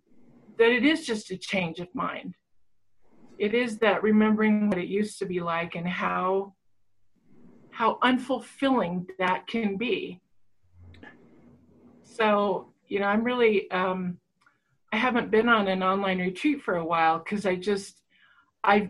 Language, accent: English, American